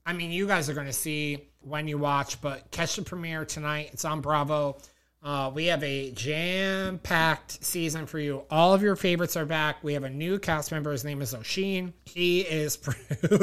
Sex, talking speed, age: male, 200 wpm, 30-49